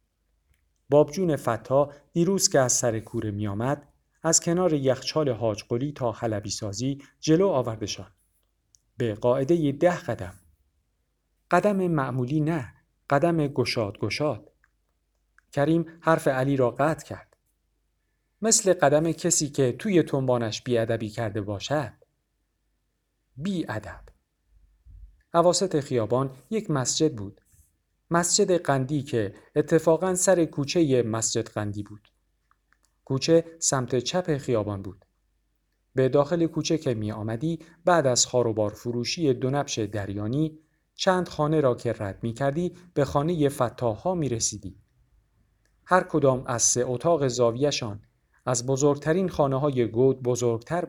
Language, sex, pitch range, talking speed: Persian, male, 105-155 Hz, 120 wpm